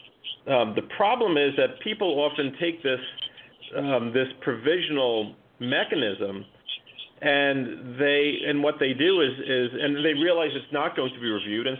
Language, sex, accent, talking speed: English, male, American, 160 wpm